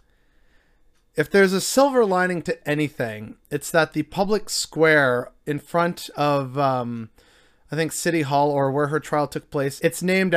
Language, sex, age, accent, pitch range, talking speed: English, male, 30-49, American, 140-165 Hz, 160 wpm